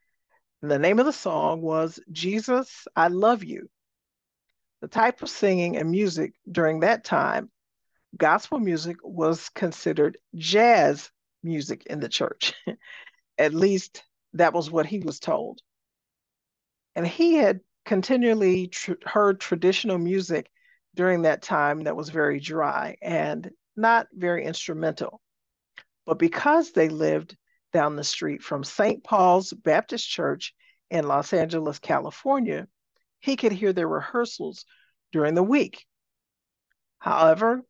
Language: English